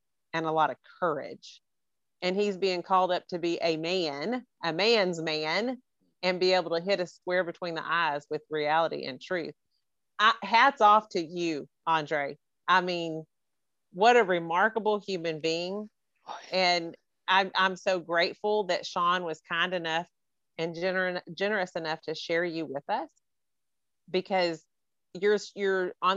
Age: 40-59